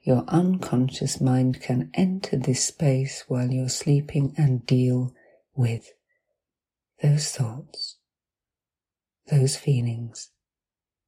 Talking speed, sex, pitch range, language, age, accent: 90 wpm, female, 120-160 Hz, English, 40-59, British